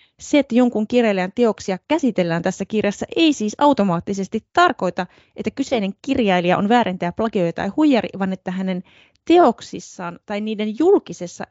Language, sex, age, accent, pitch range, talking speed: Finnish, female, 20-39, native, 190-265 Hz, 140 wpm